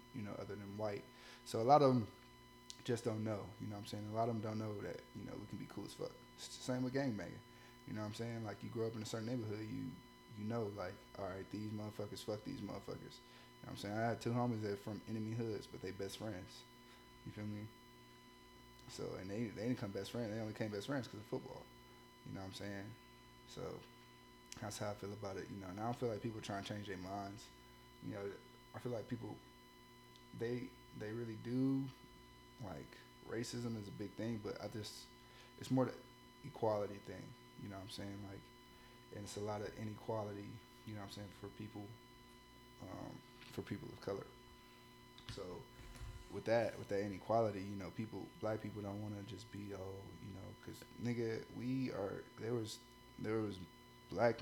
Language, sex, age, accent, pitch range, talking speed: English, male, 20-39, American, 105-125 Hz, 220 wpm